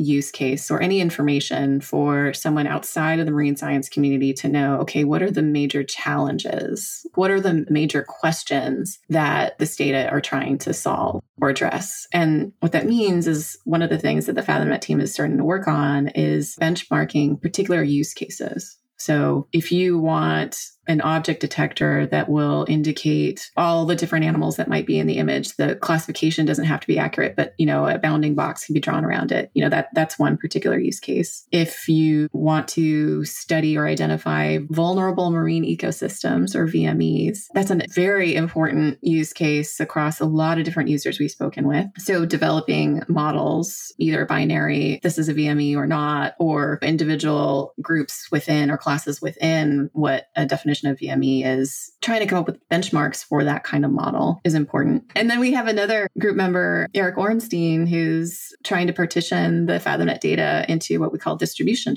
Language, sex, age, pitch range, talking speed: English, female, 30-49, 140-170 Hz, 185 wpm